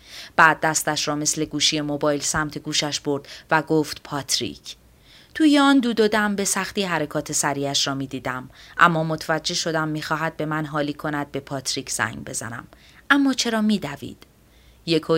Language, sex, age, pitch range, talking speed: Persian, female, 30-49, 140-165 Hz, 160 wpm